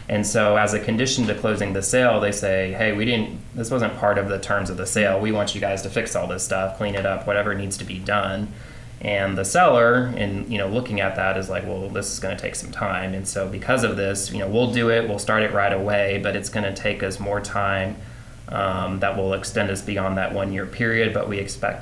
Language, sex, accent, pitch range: English, male, American, 100-110 Hz